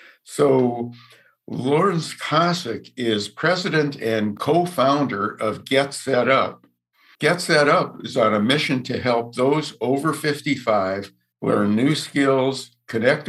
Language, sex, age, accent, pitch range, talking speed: English, male, 60-79, American, 110-145 Hz, 120 wpm